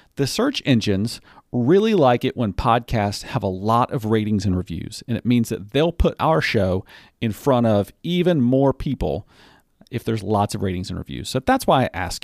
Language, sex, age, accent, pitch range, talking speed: English, male, 40-59, American, 105-145 Hz, 200 wpm